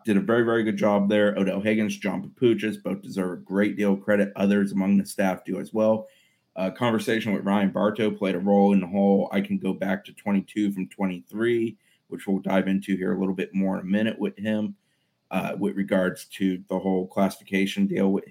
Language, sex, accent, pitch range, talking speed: English, male, American, 95-110 Hz, 220 wpm